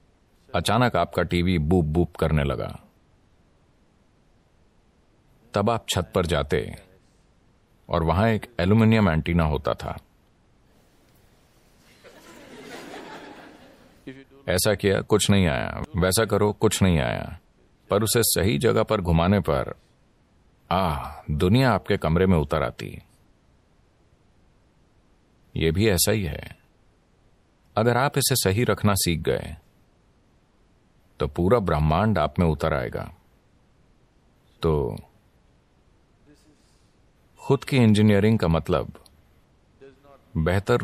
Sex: male